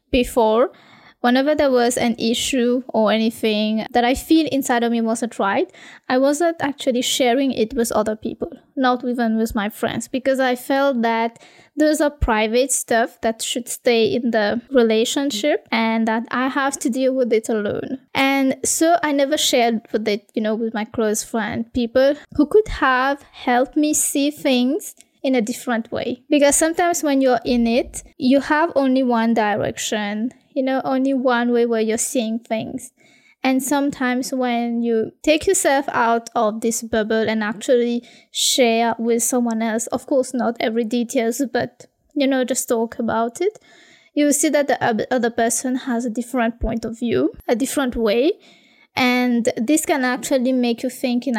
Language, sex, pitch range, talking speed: English, female, 230-275 Hz, 175 wpm